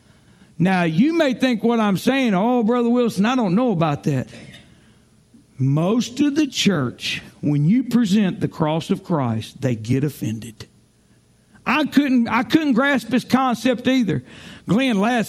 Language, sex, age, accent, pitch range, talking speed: English, male, 60-79, American, 195-280 Hz, 155 wpm